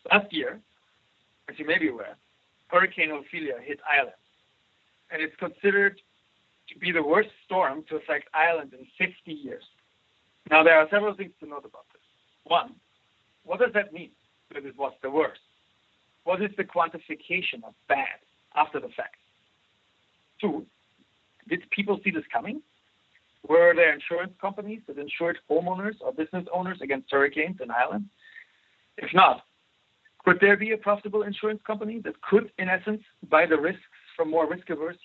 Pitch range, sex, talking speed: 150-200 Hz, male, 160 wpm